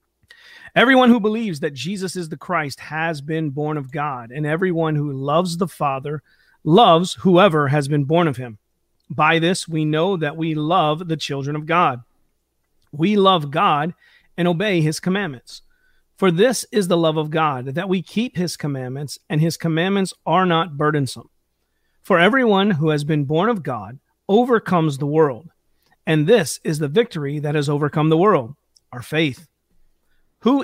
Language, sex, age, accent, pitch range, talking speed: English, male, 40-59, American, 150-190 Hz, 170 wpm